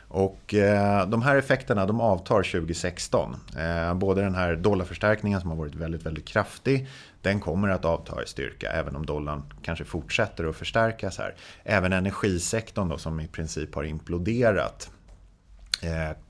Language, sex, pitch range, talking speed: Swedish, male, 80-105 Hz, 155 wpm